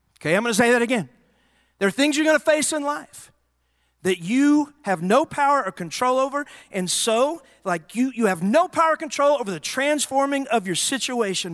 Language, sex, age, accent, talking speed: English, male, 40-59, American, 210 wpm